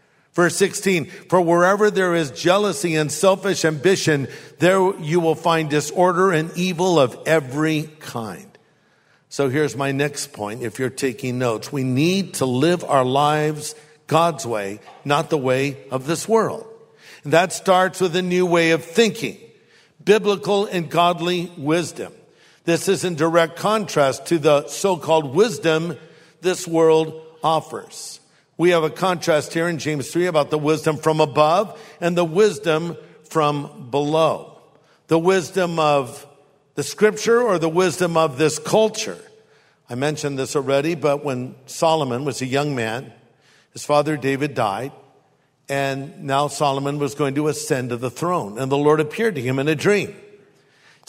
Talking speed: 155 wpm